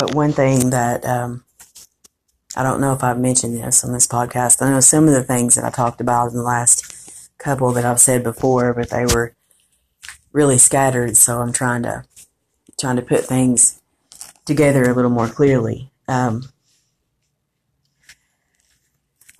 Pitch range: 120-145 Hz